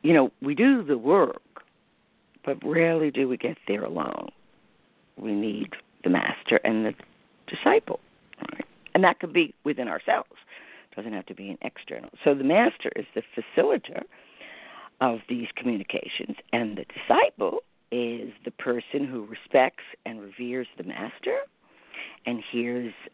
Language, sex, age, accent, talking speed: English, female, 50-69, American, 145 wpm